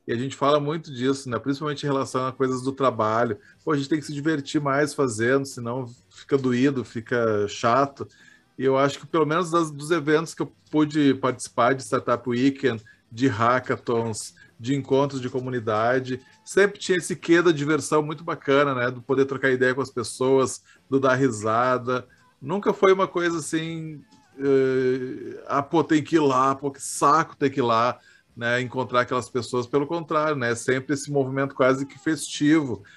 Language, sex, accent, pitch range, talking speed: Portuguese, male, Brazilian, 120-145 Hz, 185 wpm